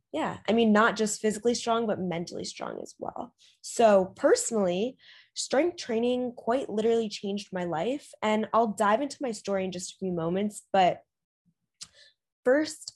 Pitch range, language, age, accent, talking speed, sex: 195-265 Hz, English, 10-29, American, 155 wpm, female